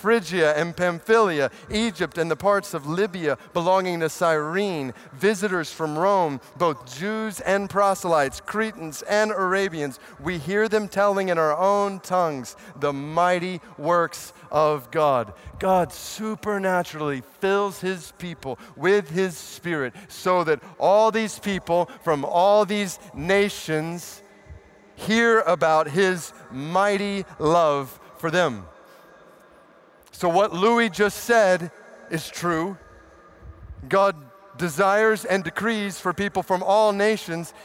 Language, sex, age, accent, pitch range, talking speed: English, male, 40-59, American, 165-205 Hz, 120 wpm